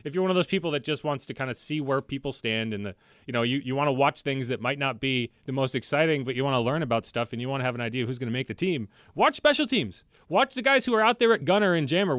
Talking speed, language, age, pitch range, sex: 335 wpm, English, 30-49, 130-195 Hz, male